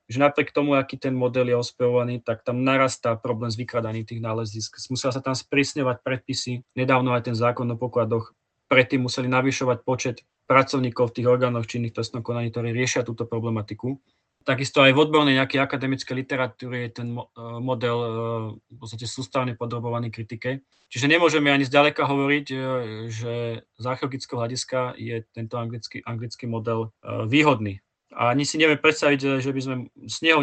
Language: Slovak